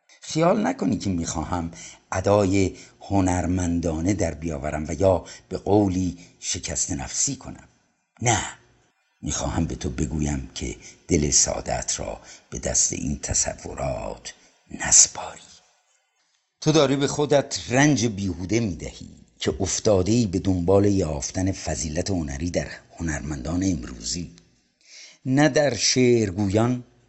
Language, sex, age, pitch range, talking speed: Persian, male, 50-69, 85-115 Hz, 110 wpm